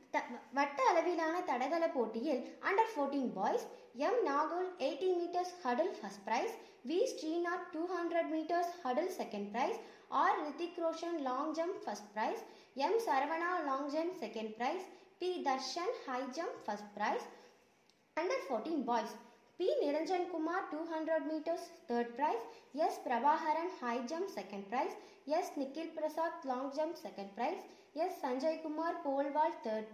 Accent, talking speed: native, 110 wpm